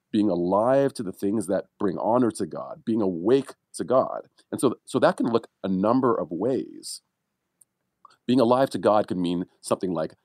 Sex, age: male, 40-59